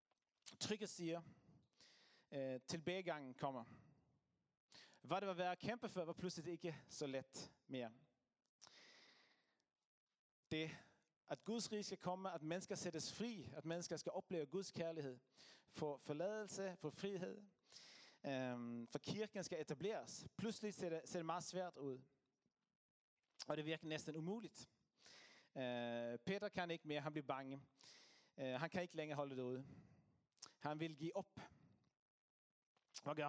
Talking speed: 130 wpm